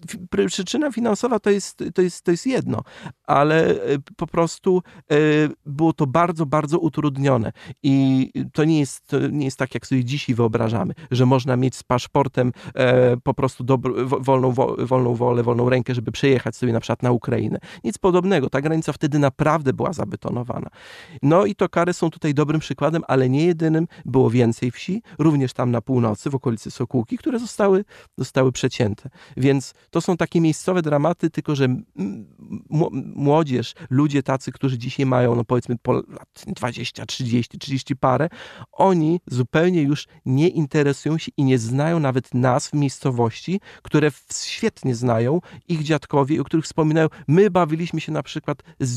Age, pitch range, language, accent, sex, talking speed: 30-49, 130-165 Hz, Polish, native, male, 160 wpm